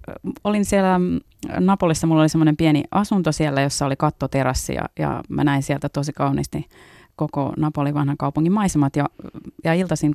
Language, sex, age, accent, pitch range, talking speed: Finnish, female, 30-49, native, 135-155 Hz, 160 wpm